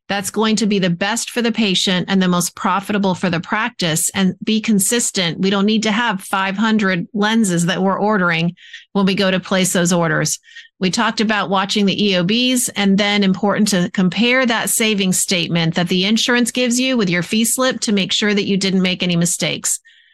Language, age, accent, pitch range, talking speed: English, 40-59, American, 185-225 Hz, 205 wpm